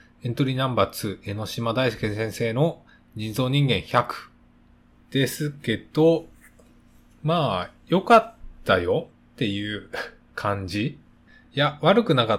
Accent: native